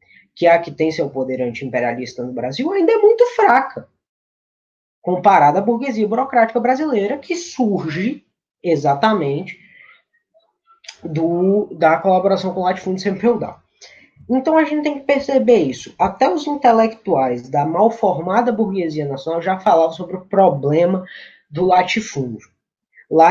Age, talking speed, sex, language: 10-29, 135 wpm, female, Portuguese